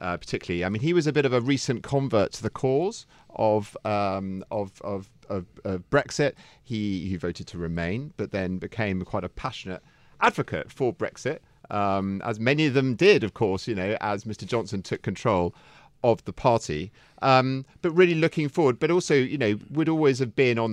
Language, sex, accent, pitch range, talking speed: English, male, British, 95-130 Hz, 195 wpm